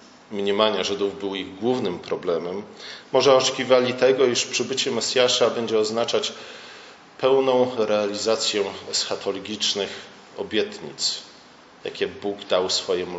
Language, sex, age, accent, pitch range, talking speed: Polish, male, 40-59, native, 105-130 Hz, 100 wpm